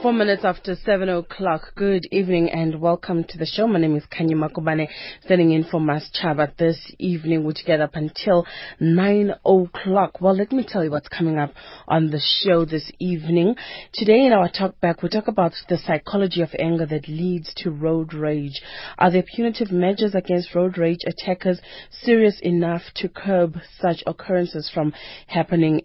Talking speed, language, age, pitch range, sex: 180 wpm, English, 30-49, 160-190 Hz, female